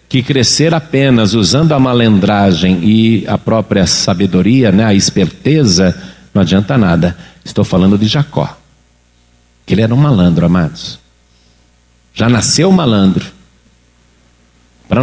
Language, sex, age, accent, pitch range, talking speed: Portuguese, male, 50-69, Brazilian, 95-135 Hz, 120 wpm